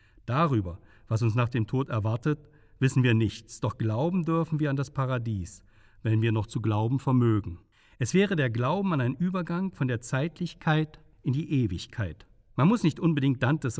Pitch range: 110-150 Hz